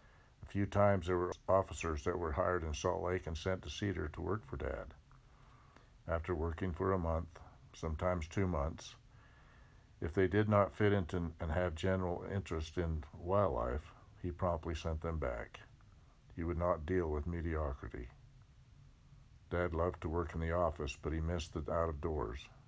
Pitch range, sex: 80-95 Hz, male